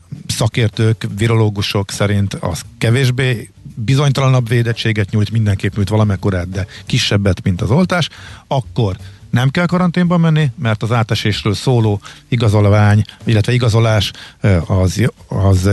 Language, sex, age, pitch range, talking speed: Hungarian, male, 50-69, 100-130 Hz, 115 wpm